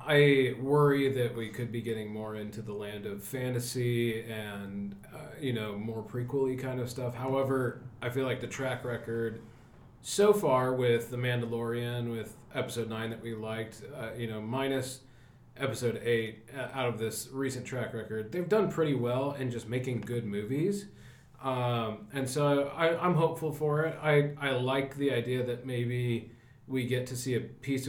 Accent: American